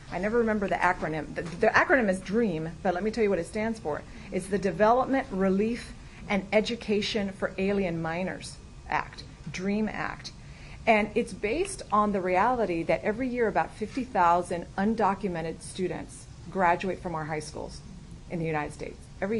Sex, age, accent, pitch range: female, 40-59, American, 170-210 Hz